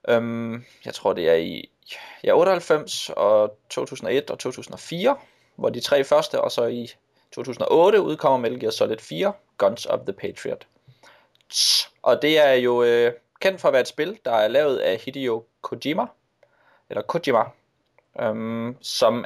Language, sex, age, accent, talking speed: Danish, male, 20-39, native, 140 wpm